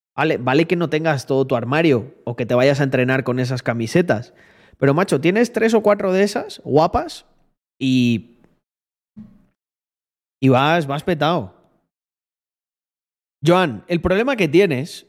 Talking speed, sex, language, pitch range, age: 145 wpm, male, Spanish, 130-180 Hz, 30-49